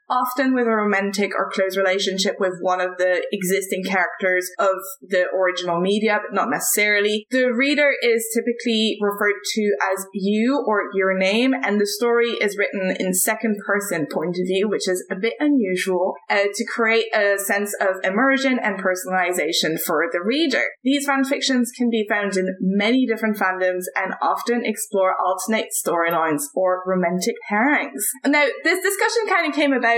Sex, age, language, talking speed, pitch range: female, 10-29, English, 165 wpm, 195-240 Hz